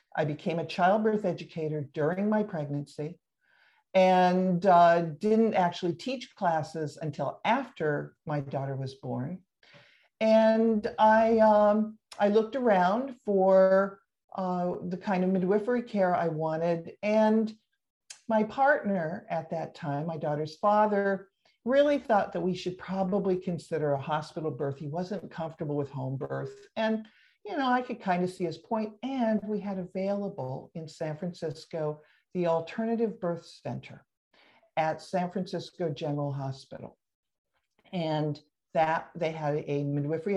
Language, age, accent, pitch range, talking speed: English, 50-69, American, 155-210 Hz, 135 wpm